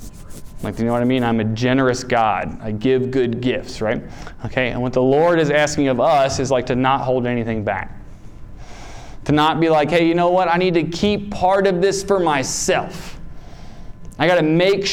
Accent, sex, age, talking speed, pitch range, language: American, male, 20-39, 210 wpm, 120-160 Hz, English